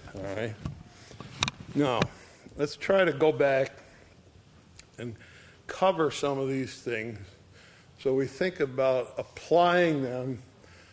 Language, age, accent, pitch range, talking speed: English, 50-69, American, 115-155 Hz, 110 wpm